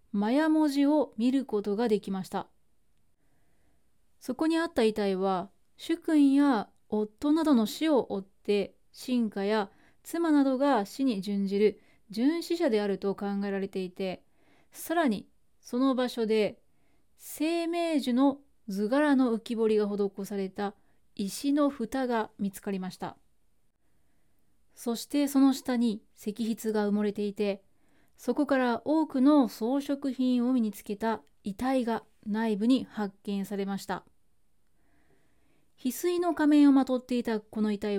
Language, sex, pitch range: Japanese, female, 205-275 Hz